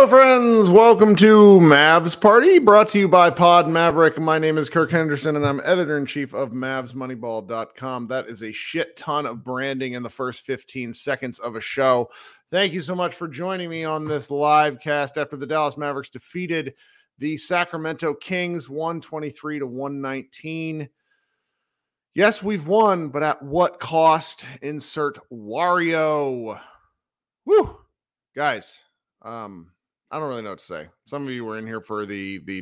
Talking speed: 160 wpm